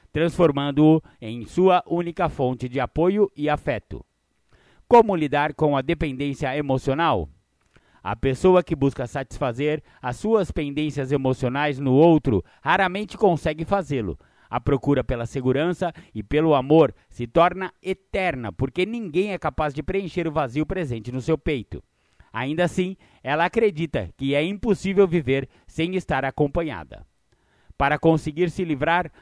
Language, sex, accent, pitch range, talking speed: Portuguese, male, Brazilian, 130-180 Hz, 135 wpm